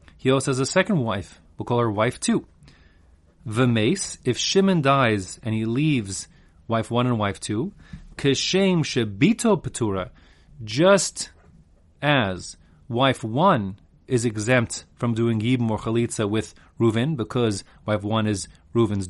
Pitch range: 105-155 Hz